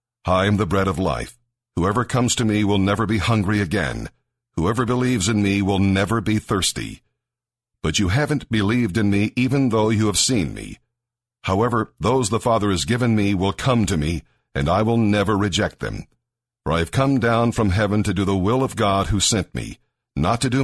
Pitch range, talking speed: 100-120 Hz, 205 wpm